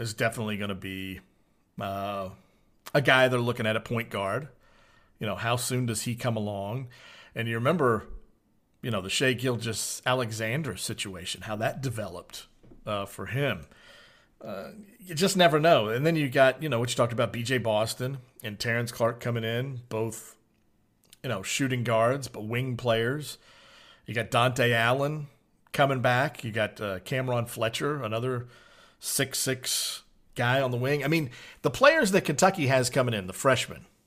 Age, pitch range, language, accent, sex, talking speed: 50-69, 110-130 Hz, English, American, male, 170 wpm